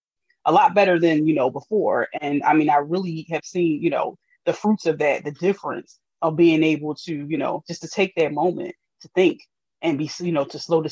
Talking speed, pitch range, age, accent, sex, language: 230 wpm, 145-175 Hz, 30-49, American, female, English